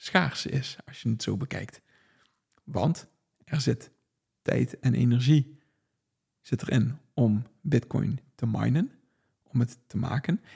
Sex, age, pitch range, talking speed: male, 50-69, 120-145 Hz, 130 wpm